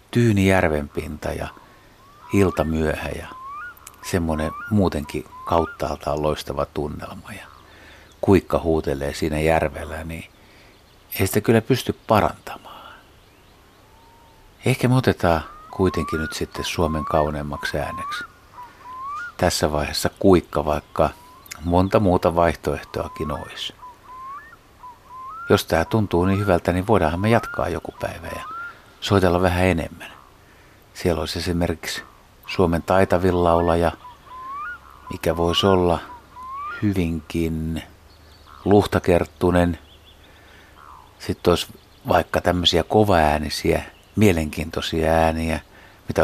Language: Finnish